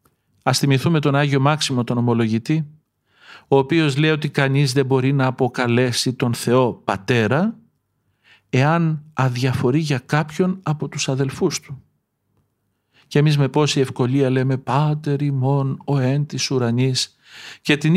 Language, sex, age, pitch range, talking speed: Greek, male, 50-69, 120-150 Hz, 125 wpm